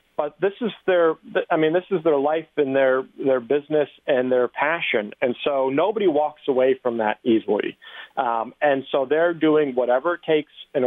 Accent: American